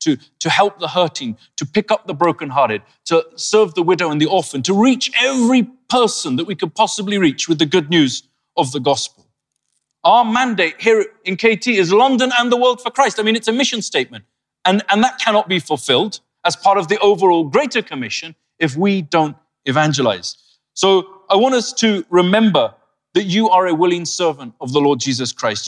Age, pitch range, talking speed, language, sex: 30-49, 160-220 Hz, 200 wpm, English, male